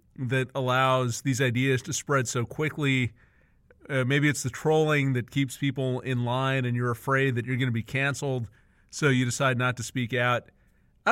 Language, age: English, 40-59